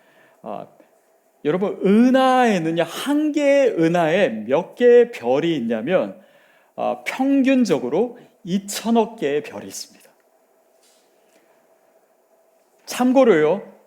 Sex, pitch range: male, 165-265 Hz